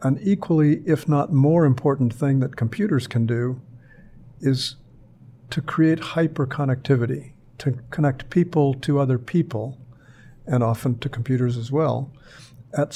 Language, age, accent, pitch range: English, 50-69, American, 125-140 Hz